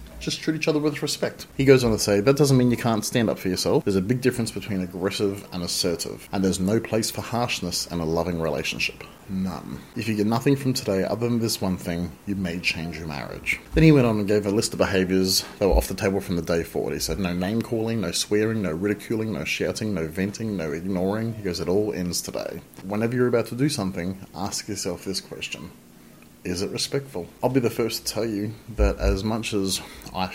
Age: 30-49